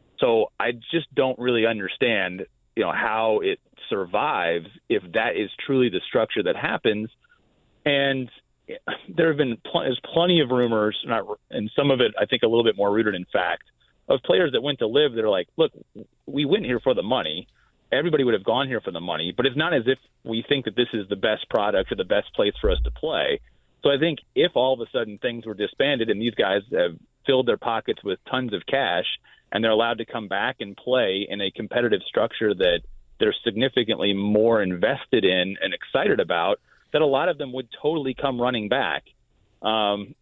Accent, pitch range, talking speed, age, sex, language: American, 110-160 Hz, 210 wpm, 30-49, male, English